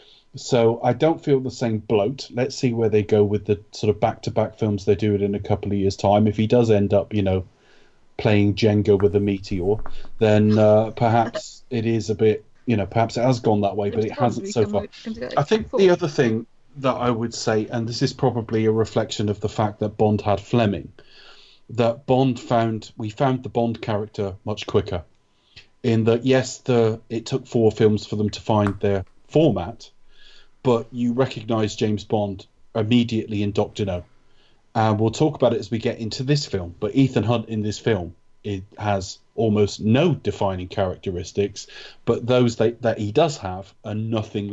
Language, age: English, 30-49